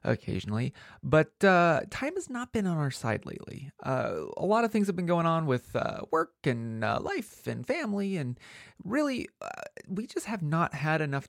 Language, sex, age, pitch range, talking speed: English, male, 30-49, 135-200 Hz, 195 wpm